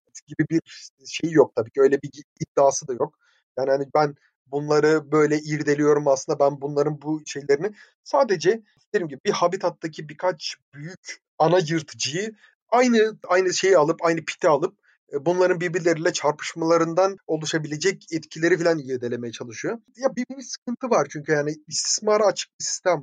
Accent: native